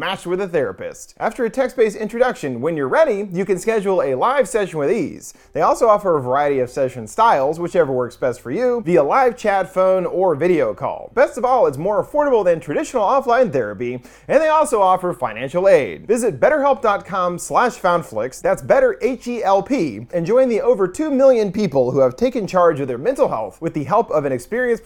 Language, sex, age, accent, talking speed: English, male, 30-49, American, 200 wpm